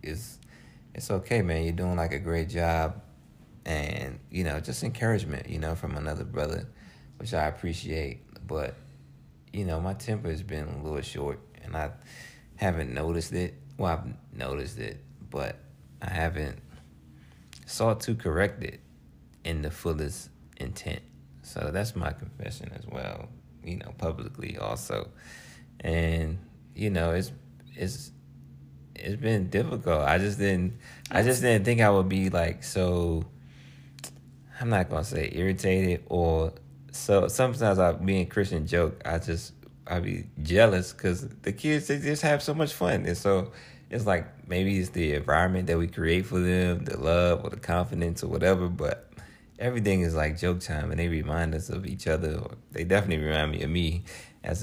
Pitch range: 80-105 Hz